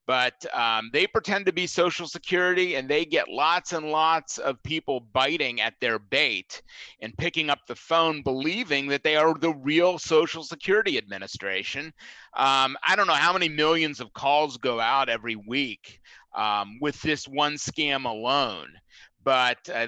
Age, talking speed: 30-49, 165 wpm